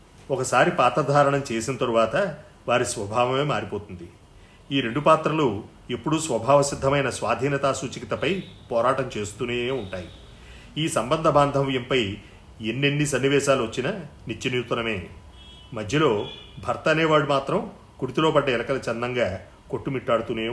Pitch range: 110-140 Hz